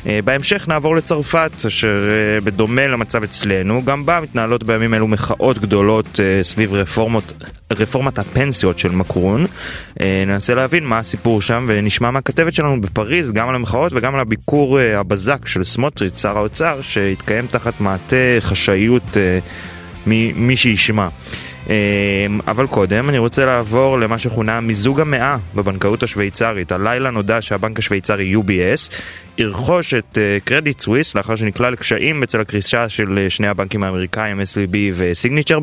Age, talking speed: 20-39, 130 wpm